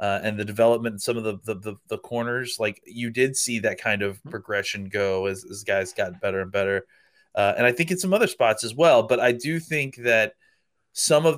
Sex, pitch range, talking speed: male, 110-130 Hz, 235 wpm